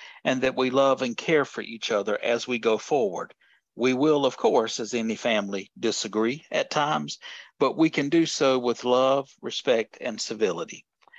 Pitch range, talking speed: 115-135 Hz, 175 wpm